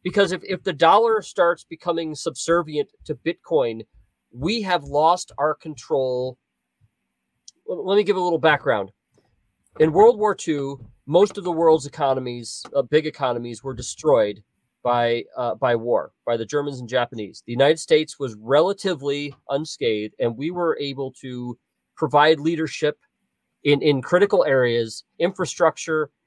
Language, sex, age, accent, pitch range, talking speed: English, male, 40-59, American, 125-165 Hz, 140 wpm